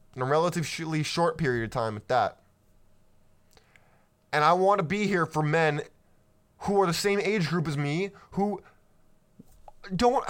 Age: 20-39